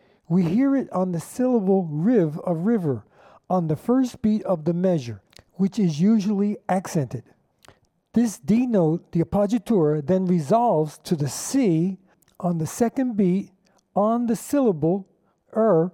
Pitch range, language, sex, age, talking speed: 155-210 Hz, English, male, 50-69, 145 wpm